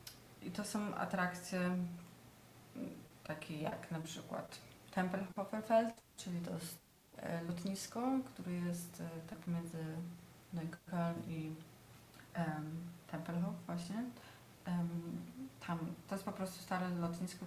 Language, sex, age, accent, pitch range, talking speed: Polish, female, 30-49, native, 165-190 Hz, 95 wpm